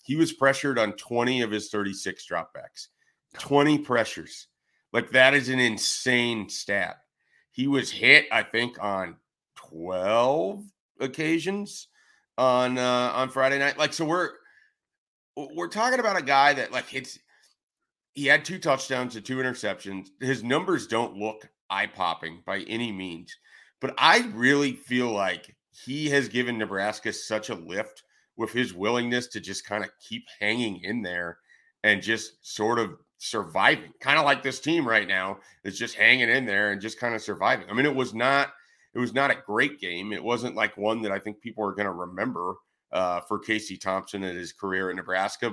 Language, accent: English, American